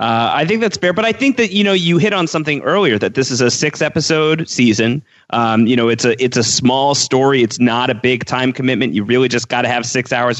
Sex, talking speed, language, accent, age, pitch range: male, 265 wpm, English, American, 30-49, 120-145 Hz